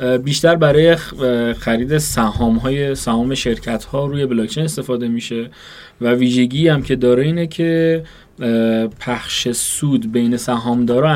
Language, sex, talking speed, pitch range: Persian, male, 120 wpm, 115-145 Hz